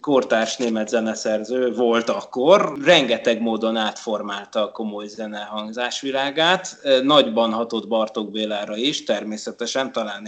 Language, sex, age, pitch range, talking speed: Hungarian, male, 30-49, 115-140 Hz, 105 wpm